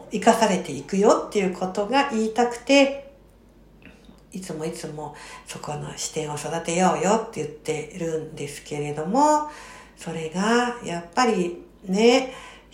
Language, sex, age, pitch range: Japanese, female, 60-79, 175-250 Hz